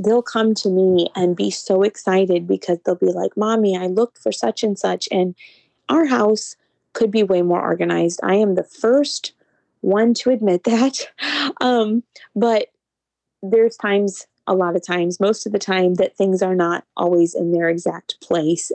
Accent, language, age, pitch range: American, English, 20-39, 190-240 Hz